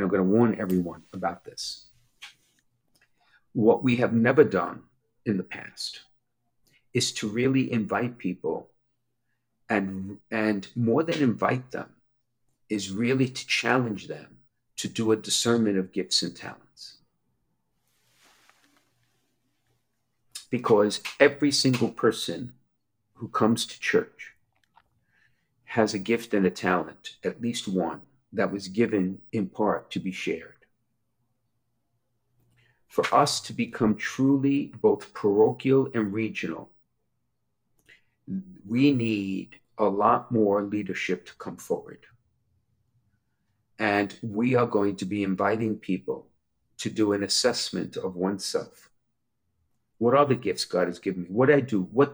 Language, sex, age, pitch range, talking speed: English, male, 50-69, 100-125 Hz, 125 wpm